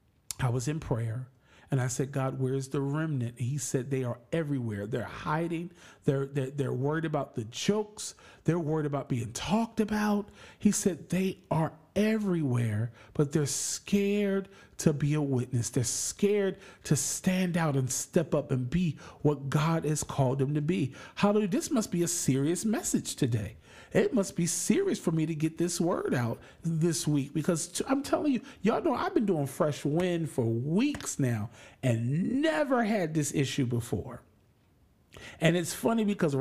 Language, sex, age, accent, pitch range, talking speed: English, male, 40-59, American, 130-190 Hz, 175 wpm